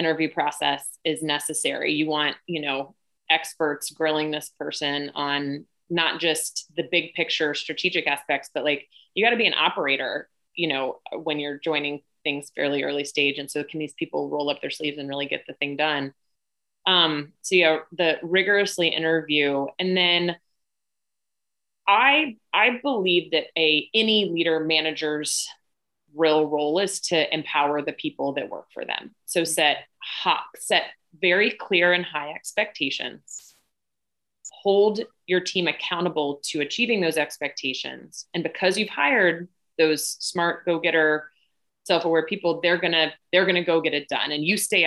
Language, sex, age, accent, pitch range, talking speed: English, female, 20-39, American, 150-180 Hz, 160 wpm